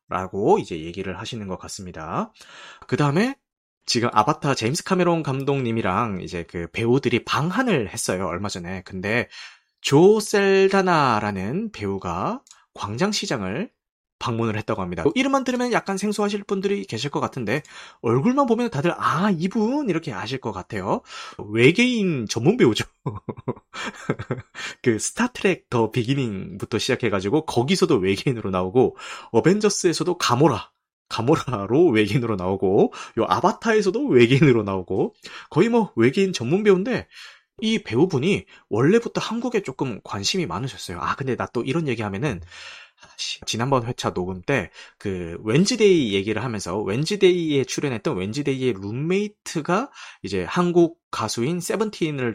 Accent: native